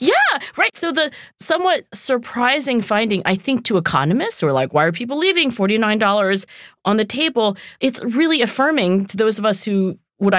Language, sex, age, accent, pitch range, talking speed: English, female, 40-59, American, 175-235 Hz, 180 wpm